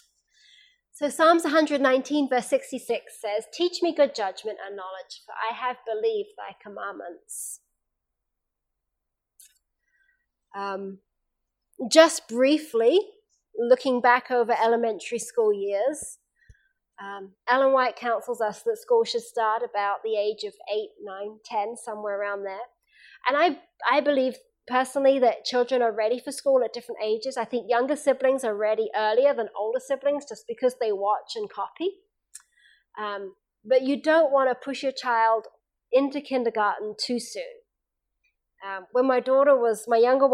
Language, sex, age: English, female, 30-49